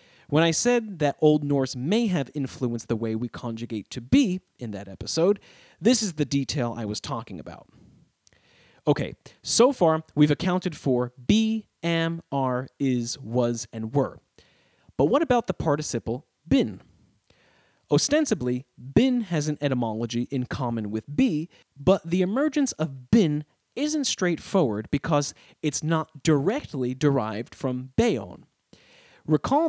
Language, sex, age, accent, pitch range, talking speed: English, male, 30-49, American, 120-165 Hz, 140 wpm